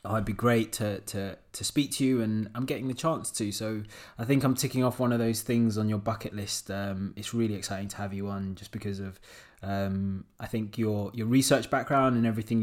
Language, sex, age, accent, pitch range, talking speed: English, male, 20-39, British, 105-125 Hz, 240 wpm